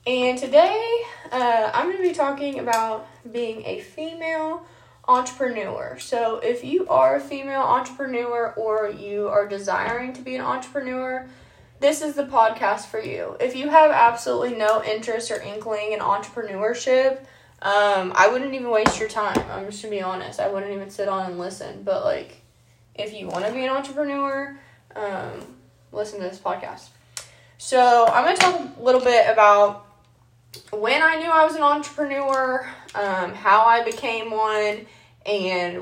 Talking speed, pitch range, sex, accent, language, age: 170 wpm, 205-300 Hz, female, American, English, 10-29